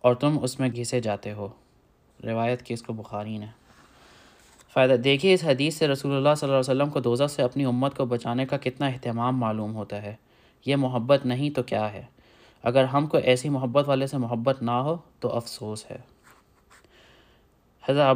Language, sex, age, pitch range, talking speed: Urdu, male, 20-39, 120-140 Hz, 190 wpm